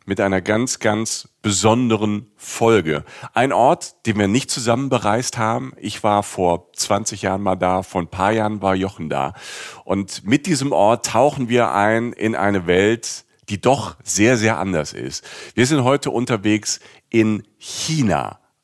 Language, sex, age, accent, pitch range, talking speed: German, male, 40-59, German, 100-120 Hz, 160 wpm